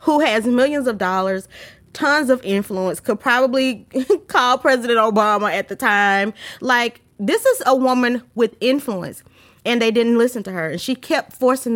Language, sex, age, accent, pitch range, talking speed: English, female, 20-39, American, 195-260 Hz, 170 wpm